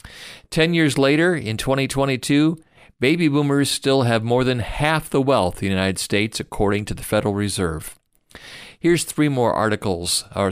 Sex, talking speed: male, 160 wpm